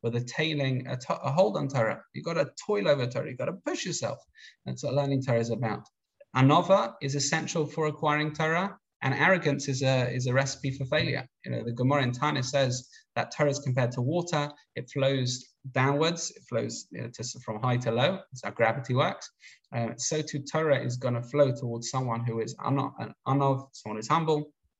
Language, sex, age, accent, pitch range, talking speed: English, male, 20-39, British, 115-145 Hz, 210 wpm